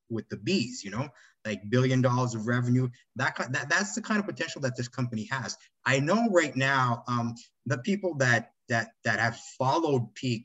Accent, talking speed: American, 195 wpm